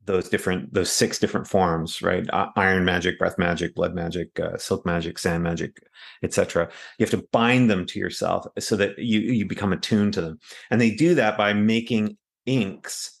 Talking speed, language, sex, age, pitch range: 185 wpm, English, male, 30-49, 95-110 Hz